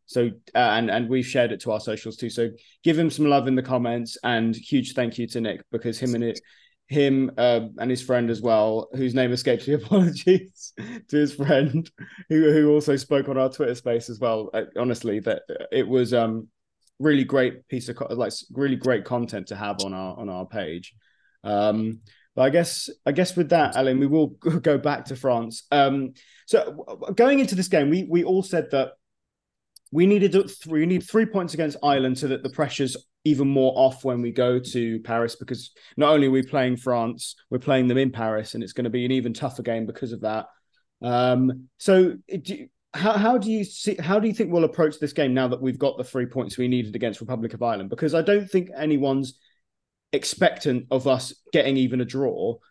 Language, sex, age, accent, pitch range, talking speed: English, male, 20-39, British, 120-155 Hz, 215 wpm